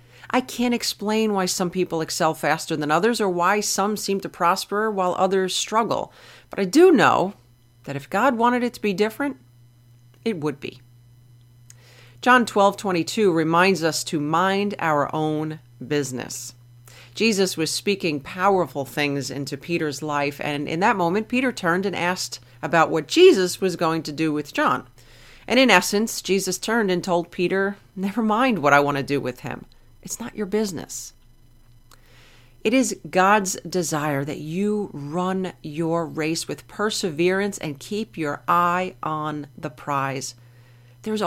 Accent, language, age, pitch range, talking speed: American, English, 40-59, 135-195 Hz, 160 wpm